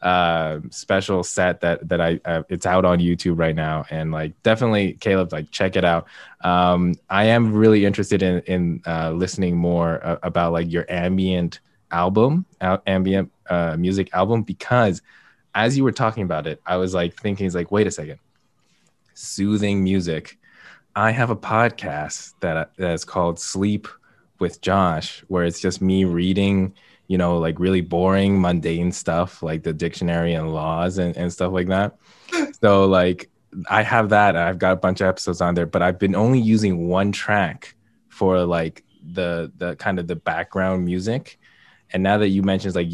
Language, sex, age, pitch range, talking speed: English, male, 20-39, 85-95 Hz, 175 wpm